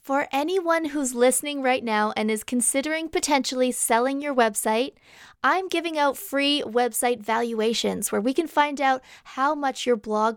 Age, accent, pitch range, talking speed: 20-39, American, 225-285 Hz, 160 wpm